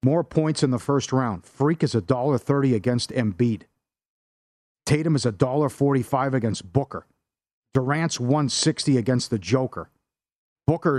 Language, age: English, 50-69